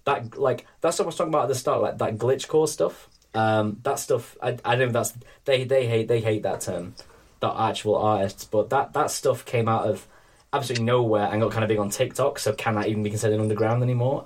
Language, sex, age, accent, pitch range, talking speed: English, male, 10-29, British, 105-135 Hz, 235 wpm